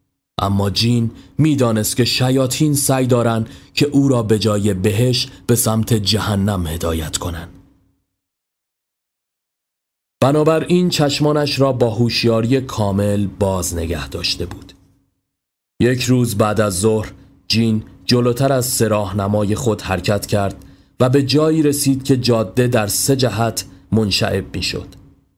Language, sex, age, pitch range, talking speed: Persian, male, 40-59, 100-130 Hz, 130 wpm